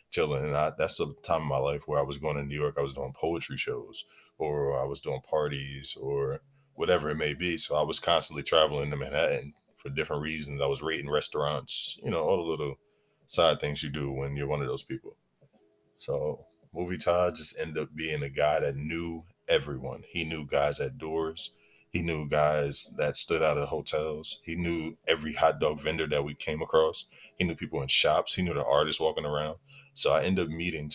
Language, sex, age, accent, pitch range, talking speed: English, male, 20-39, American, 70-85 Hz, 215 wpm